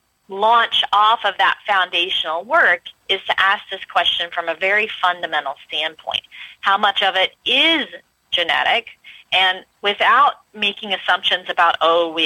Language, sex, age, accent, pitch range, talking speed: English, female, 30-49, American, 170-225 Hz, 140 wpm